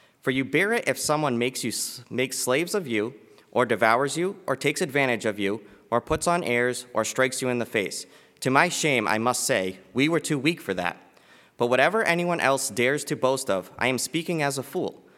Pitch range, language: 110-150 Hz, English